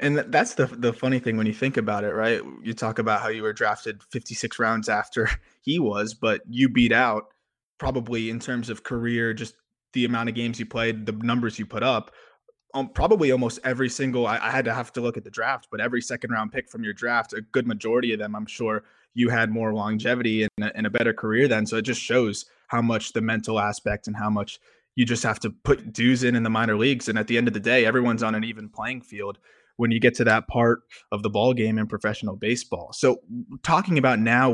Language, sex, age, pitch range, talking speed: English, male, 20-39, 110-125 Hz, 240 wpm